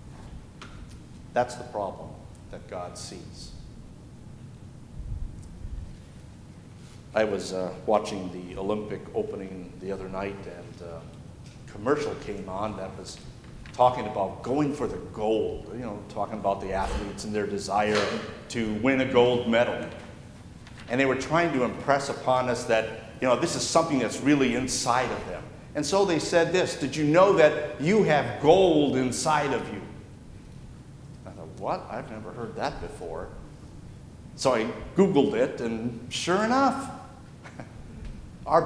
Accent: American